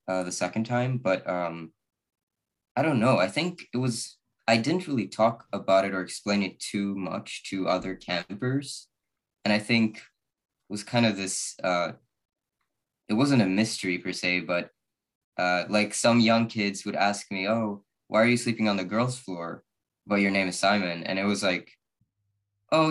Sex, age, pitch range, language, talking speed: male, 20-39, 95-115 Hz, English, 185 wpm